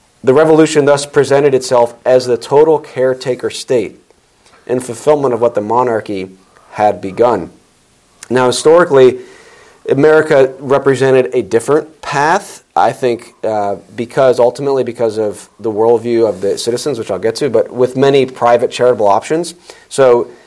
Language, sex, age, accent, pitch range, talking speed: English, male, 40-59, American, 110-145 Hz, 140 wpm